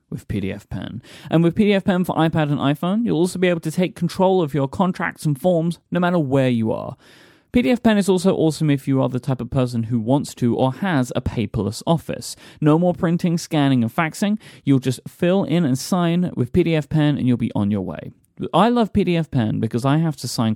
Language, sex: English, male